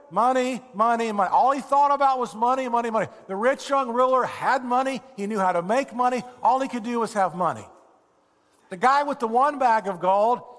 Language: English